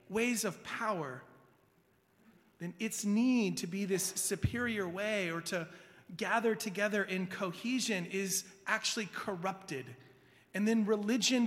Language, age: English, 30-49